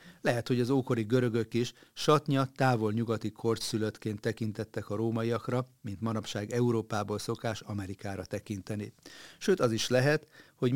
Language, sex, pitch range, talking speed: Hungarian, male, 105-125 Hz, 135 wpm